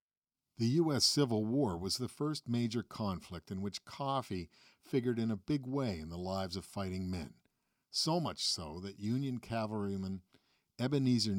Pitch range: 95-125 Hz